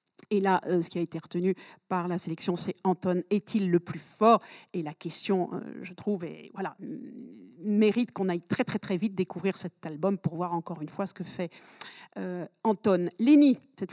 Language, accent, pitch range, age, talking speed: French, French, 180-235 Hz, 50-69, 195 wpm